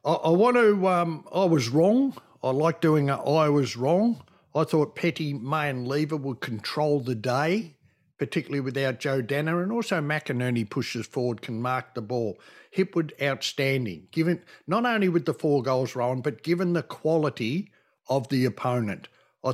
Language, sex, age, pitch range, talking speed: English, male, 60-79, 130-165 Hz, 170 wpm